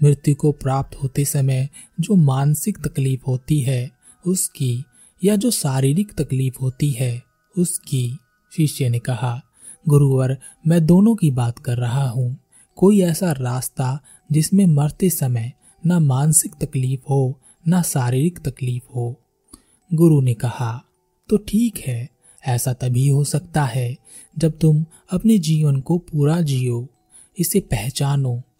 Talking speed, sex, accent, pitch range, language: 130 wpm, male, native, 130-170 Hz, Hindi